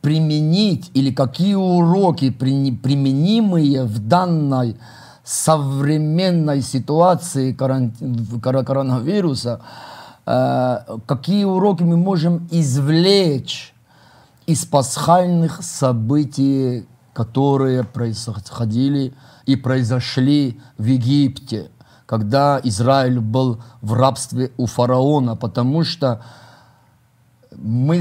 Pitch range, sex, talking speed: 125-160 Hz, male, 75 wpm